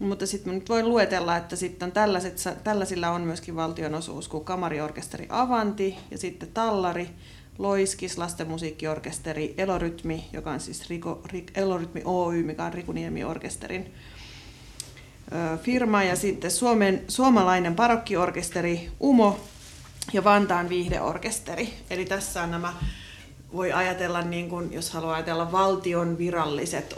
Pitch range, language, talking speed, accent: 165-190 Hz, Finnish, 120 wpm, native